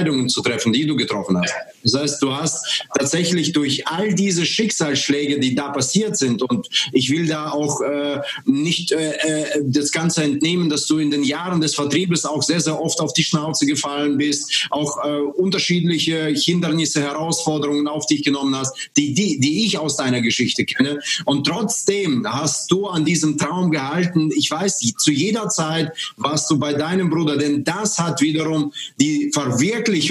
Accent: German